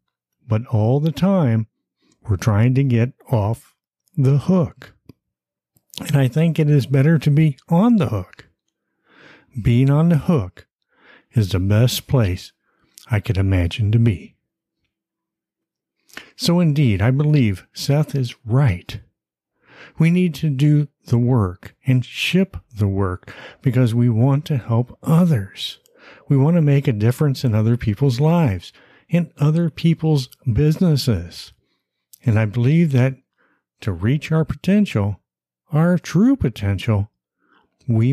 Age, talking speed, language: 60-79, 130 wpm, English